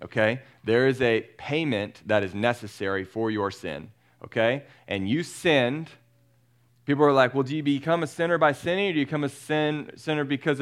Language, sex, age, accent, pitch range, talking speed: English, male, 30-49, American, 105-130 Hz, 190 wpm